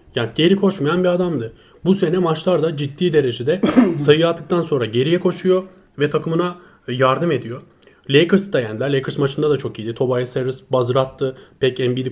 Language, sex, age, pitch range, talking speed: Turkish, male, 30-49, 130-175 Hz, 165 wpm